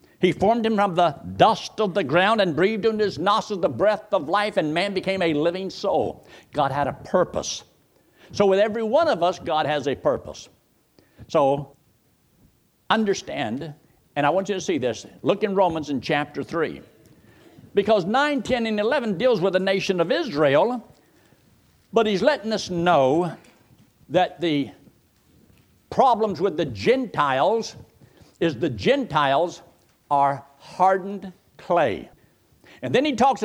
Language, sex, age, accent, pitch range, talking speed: English, male, 60-79, American, 165-220 Hz, 155 wpm